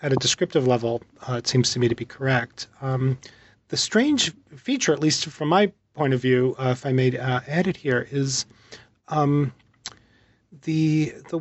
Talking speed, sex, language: 185 wpm, male, English